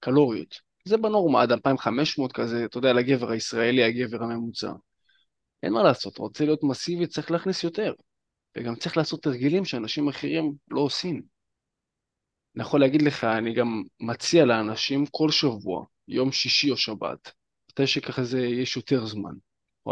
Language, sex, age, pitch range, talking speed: Hebrew, male, 20-39, 120-155 Hz, 150 wpm